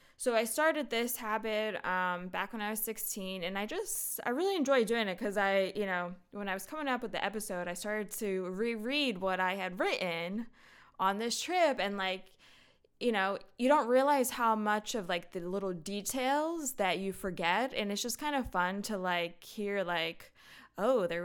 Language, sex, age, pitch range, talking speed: English, female, 20-39, 180-235 Hz, 200 wpm